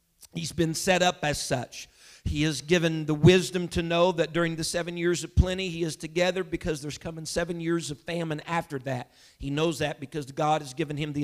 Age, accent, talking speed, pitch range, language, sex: 50-69, American, 220 wpm, 150-180 Hz, English, male